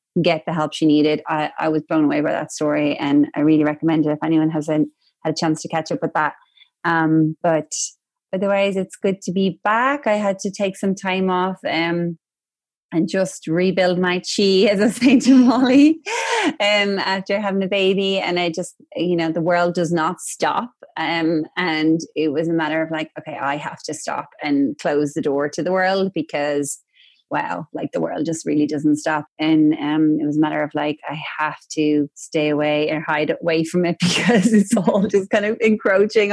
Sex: female